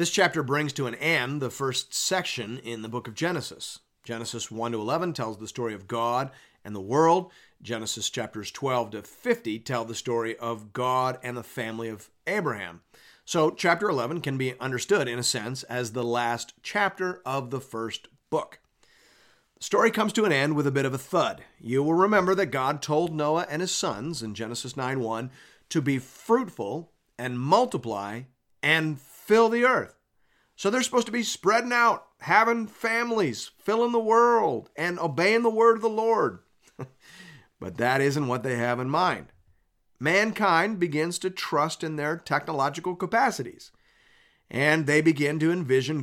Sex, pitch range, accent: male, 120-190 Hz, American